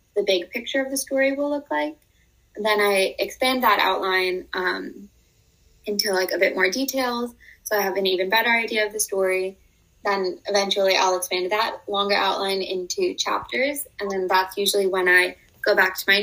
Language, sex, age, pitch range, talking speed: English, female, 20-39, 185-230 Hz, 190 wpm